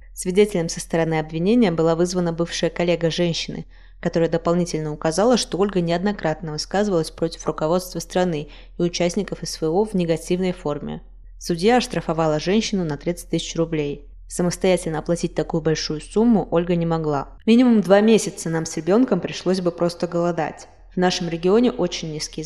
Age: 20-39